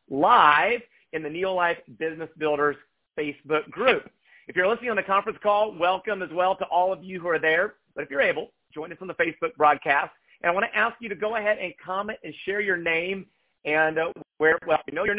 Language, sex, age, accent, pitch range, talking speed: English, male, 40-59, American, 160-220 Hz, 225 wpm